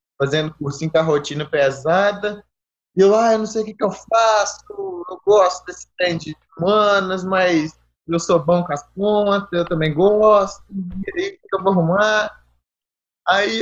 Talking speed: 185 wpm